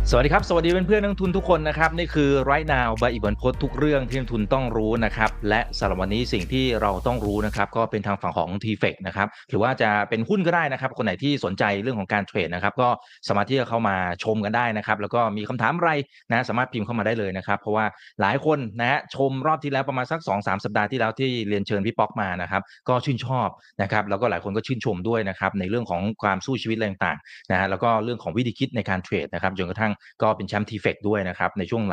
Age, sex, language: 30-49, male, Thai